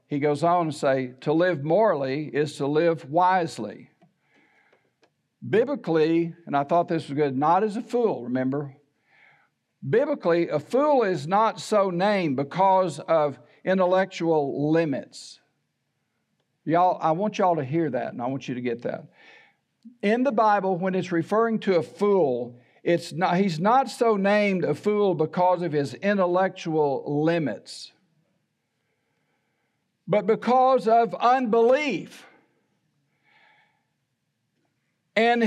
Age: 60-79